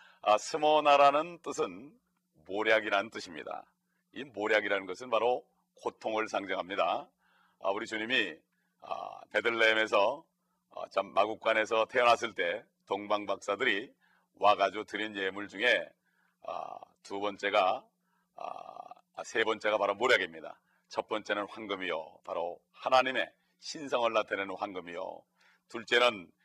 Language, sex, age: Korean, male, 40-59